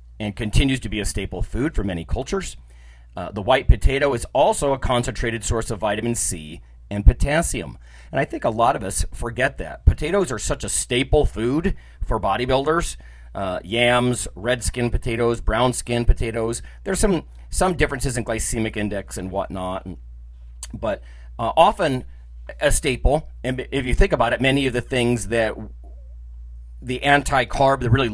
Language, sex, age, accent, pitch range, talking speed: English, male, 40-59, American, 80-125 Hz, 170 wpm